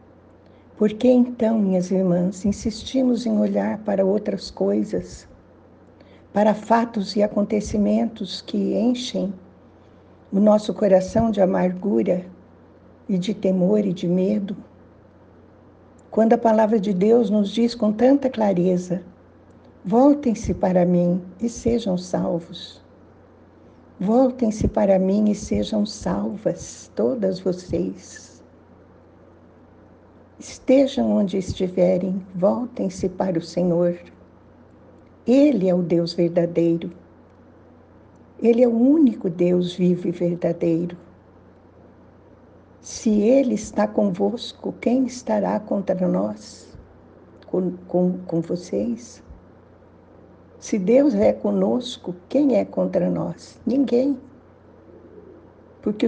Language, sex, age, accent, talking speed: Portuguese, female, 60-79, Brazilian, 100 wpm